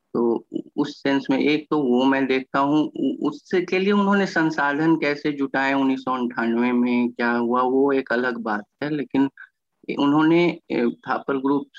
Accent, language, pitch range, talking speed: native, Hindi, 125-155 Hz, 150 wpm